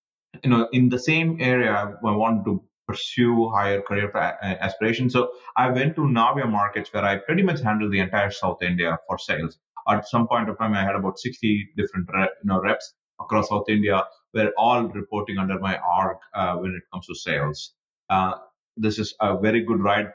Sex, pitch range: male, 95-125 Hz